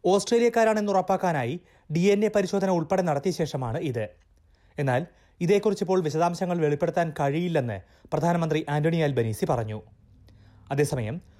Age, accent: 30-49, native